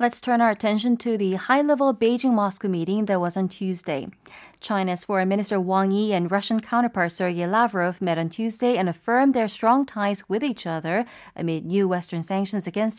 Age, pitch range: 30-49, 180-230 Hz